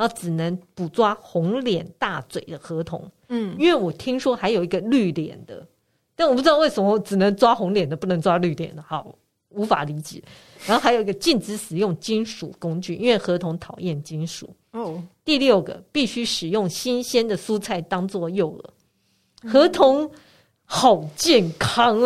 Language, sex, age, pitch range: Chinese, female, 50-69, 175-240 Hz